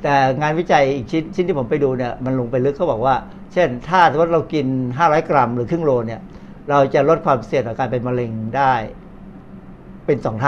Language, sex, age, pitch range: Thai, male, 60-79, 130-170 Hz